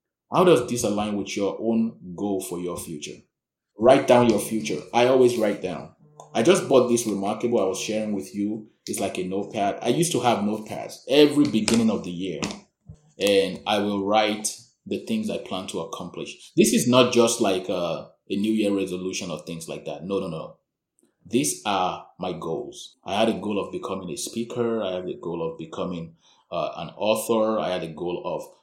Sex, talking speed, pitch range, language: male, 200 wpm, 95-120 Hz, English